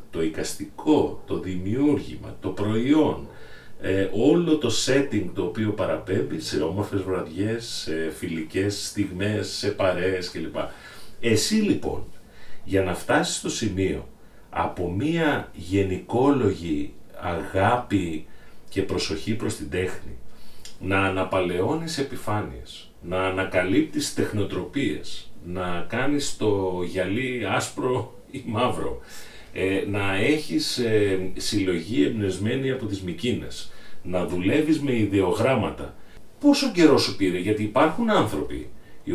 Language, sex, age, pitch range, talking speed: Greek, male, 40-59, 95-145 Hz, 110 wpm